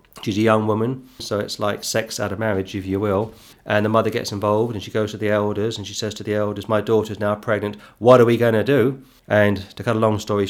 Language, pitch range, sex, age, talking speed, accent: English, 105-130 Hz, male, 40-59, 270 wpm, British